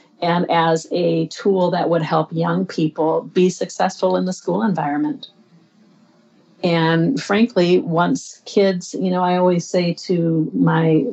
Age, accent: 50-69, American